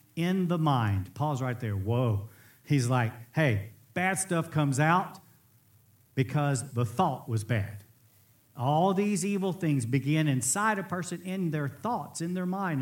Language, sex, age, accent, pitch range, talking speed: English, male, 50-69, American, 120-170 Hz, 155 wpm